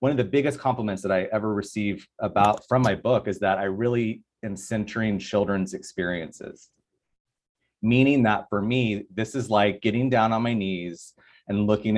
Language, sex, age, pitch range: English, male, 30-49, 95-115 Hz